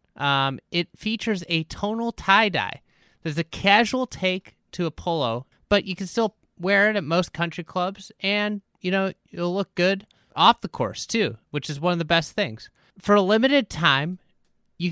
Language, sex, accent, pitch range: English, male, American, 135-185 Hz